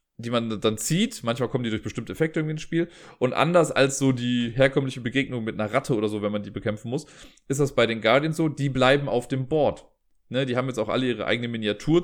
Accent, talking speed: German, 255 wpm